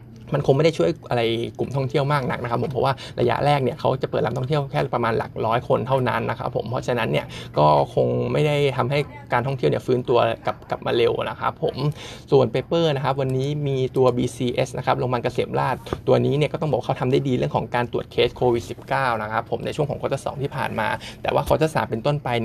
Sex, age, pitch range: male, 20-39, 120-140 Hz